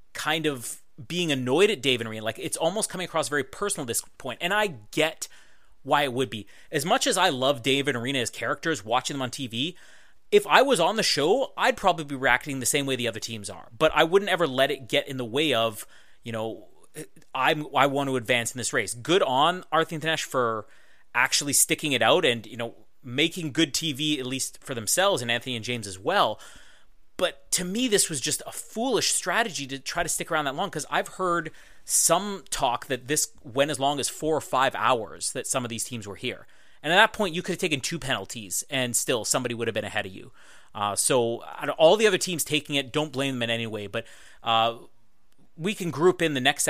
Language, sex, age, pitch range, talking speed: English, male, 30-49, 120-160 Hz, 235 wpm